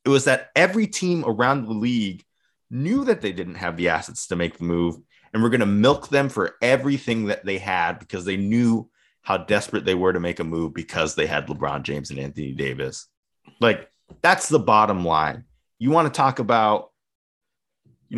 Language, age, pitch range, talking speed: English, 30-49, 90-120 Hz, 200 wpm